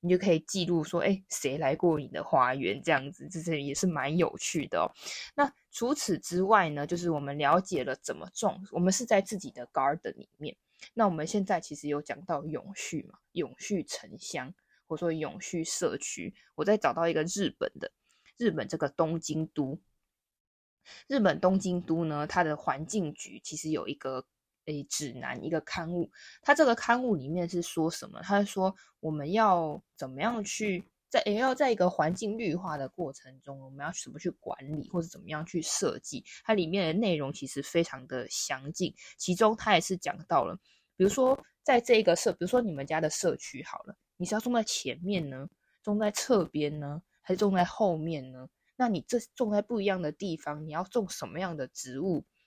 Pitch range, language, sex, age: 155-205 Hz, Chinese, female, 20-39